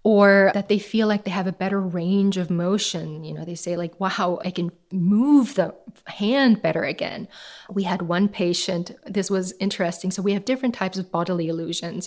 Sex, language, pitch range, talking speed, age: female, English, 180-220 Hz, 200 wpm, 30-49